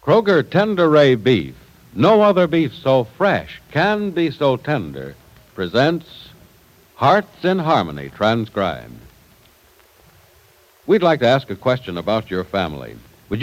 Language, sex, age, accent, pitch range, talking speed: English, male, 60-79, American, 100-160 Hz, 125 wpm